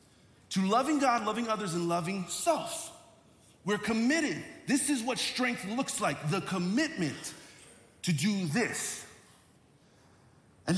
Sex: male